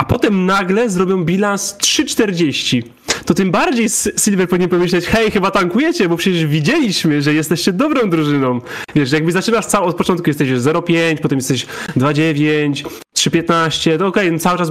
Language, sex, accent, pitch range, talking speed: Polish, male, native, 145-185 Hz, 160 wpm